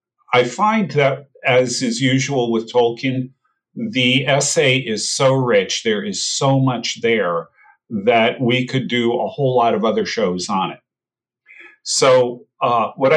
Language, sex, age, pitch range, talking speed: English, male, 40-59, 115-175 Hz, 150 wpm